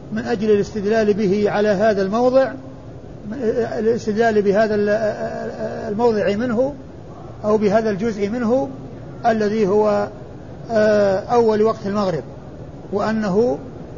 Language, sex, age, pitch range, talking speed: Arabic, male, 50-69, 170-220 Hz, 90 wpm